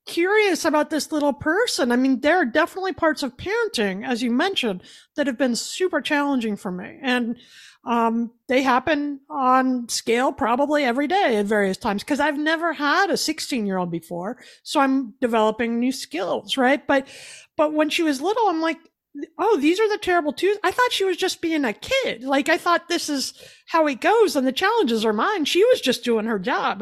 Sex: female